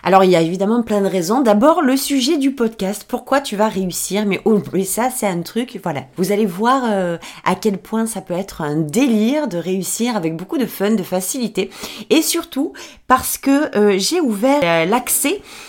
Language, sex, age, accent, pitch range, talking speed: French, female, 30-49, French, 195-270 Hz, 200 wpm